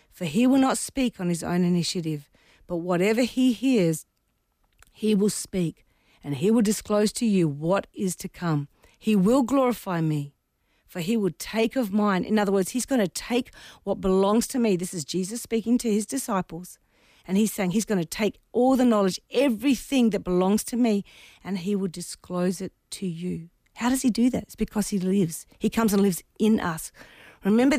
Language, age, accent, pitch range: English, 40-59, Australian, 190-245 Hz